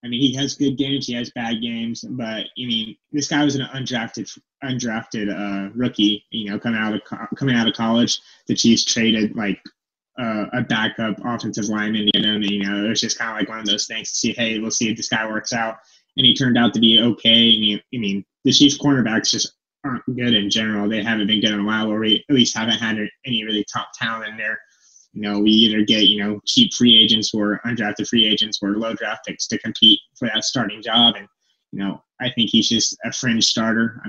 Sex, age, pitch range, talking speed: male, 20-39, 105-120 Hz, 245 wpm